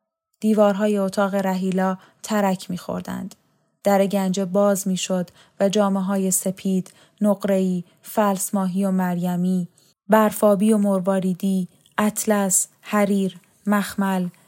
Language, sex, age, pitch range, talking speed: Persian, female, 10-29, 185-205 Hz, 90 wpm